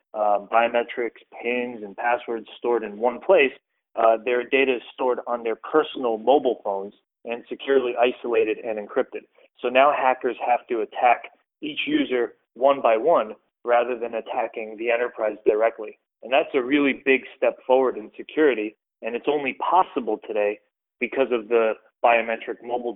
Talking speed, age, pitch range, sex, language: 155 wpm, 30-49, 115-140 Hz, male, English